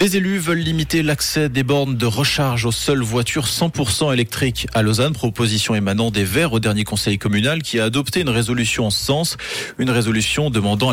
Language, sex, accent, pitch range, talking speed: French, male, French, 105-140 Hz, 185 wpm